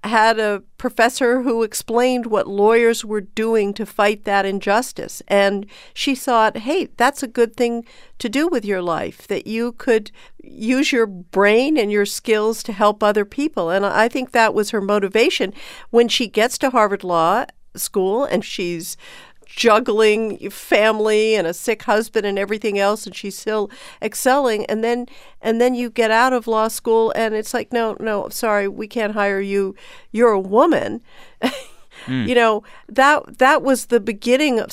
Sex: female